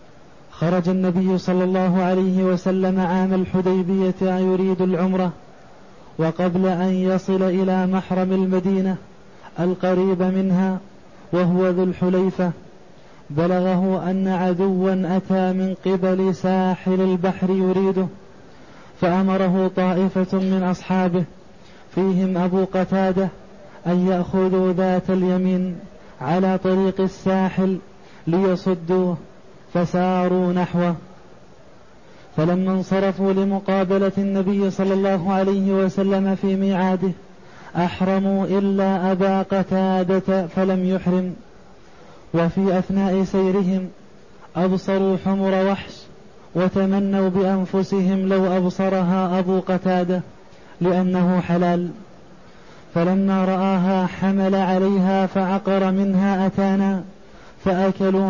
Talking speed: 85 wpm